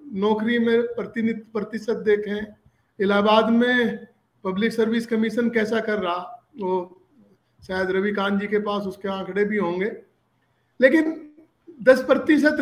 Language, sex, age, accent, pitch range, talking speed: Hindi, male, 50-69, native, 210-245 Hz, 130 wpm